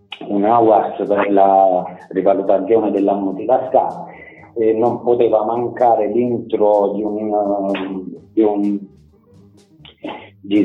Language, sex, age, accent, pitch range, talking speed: Italian, male, 40-59, native, 100-115 Hz, 95 wpm